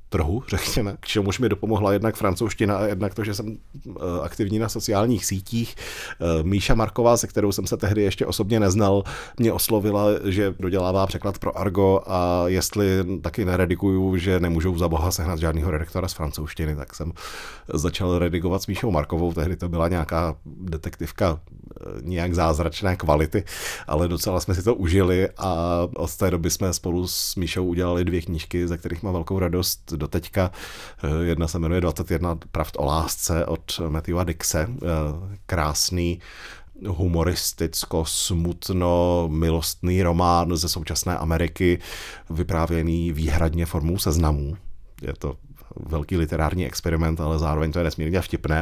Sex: male